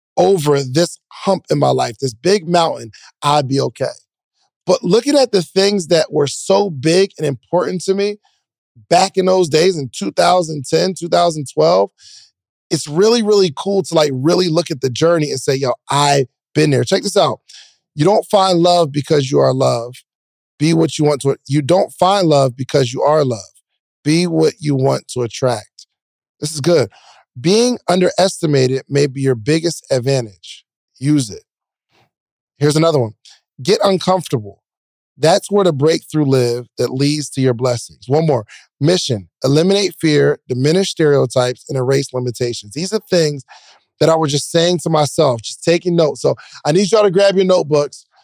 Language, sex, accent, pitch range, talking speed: English, male, American, 135-180 Hz, 170 wpm